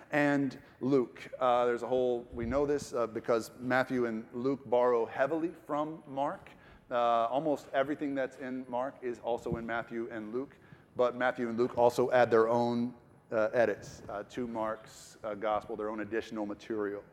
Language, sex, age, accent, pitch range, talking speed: English, male, 40-59, American, 125-195 Hz, 170 wpm